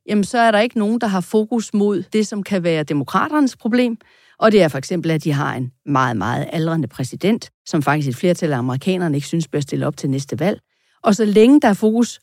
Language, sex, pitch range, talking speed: Danish, female, 165-240 Hz, 240 wpm